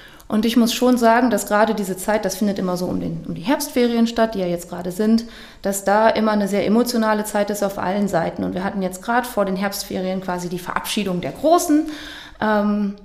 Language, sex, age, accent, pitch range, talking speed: German, female, 30-49, German, 195-230 Hz, 220 wpm